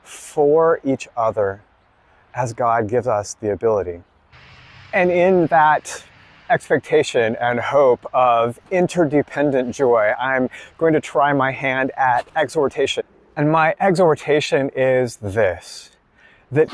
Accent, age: American, 30-49